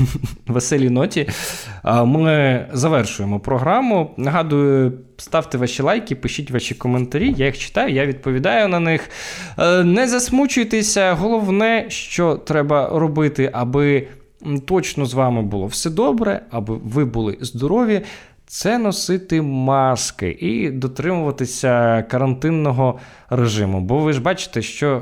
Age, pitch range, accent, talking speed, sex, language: 20-39, 115-155 Hz, native, 115 wpm, male, Ukrainian